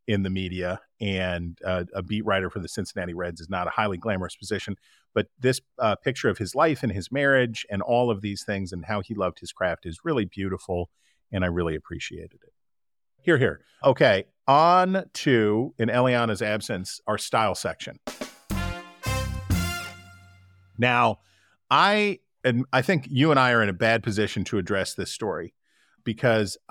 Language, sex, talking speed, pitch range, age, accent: English, male, 170 wpm, 95-125 Hz, 40-59, American